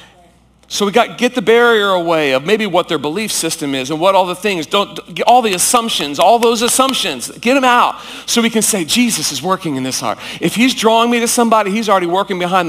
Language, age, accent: English, 40-59, American